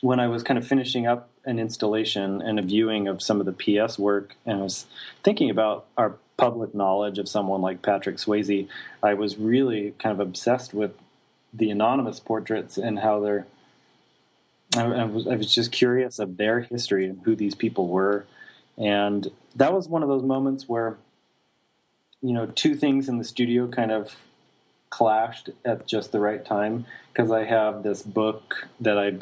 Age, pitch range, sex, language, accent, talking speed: 30-49, 105-115 Hz, male, English, American, 185 wpm